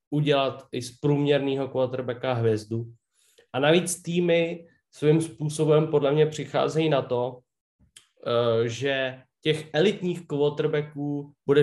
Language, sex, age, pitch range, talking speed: Slovak, male, 20-39, 125-150 Hz, 110 wpm